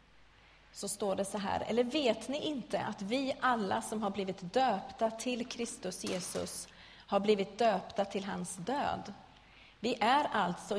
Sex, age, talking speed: female, 30-49, 155 wpm